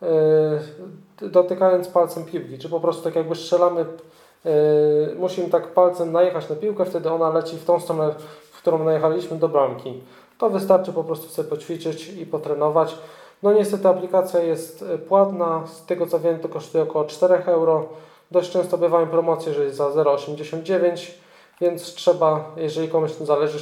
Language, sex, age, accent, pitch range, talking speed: Polish, male, 20-39, native, 150-180 Hz, 160 wpm